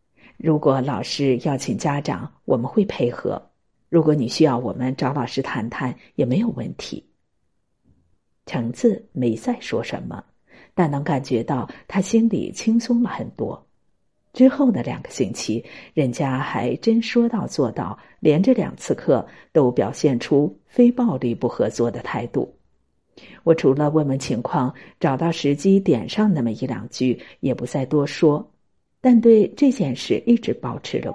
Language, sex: Chinese, female